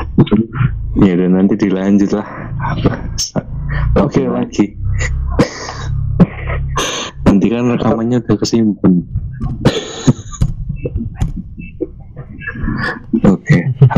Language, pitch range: Indonesian, 85-105 Hz